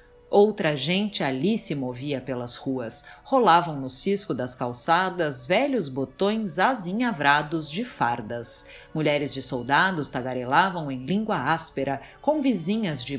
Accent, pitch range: Brazilian, 135-220 Hz